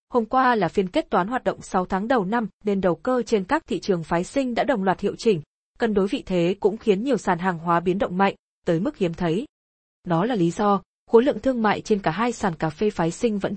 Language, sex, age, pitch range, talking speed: Vietnamese, female, 20-39, 180-235 Hz, 265 wpm